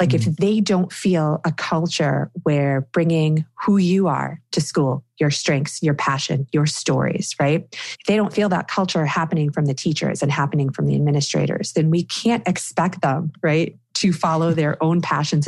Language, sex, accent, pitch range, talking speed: English, female, American, 155-185 Hz, 180 wpm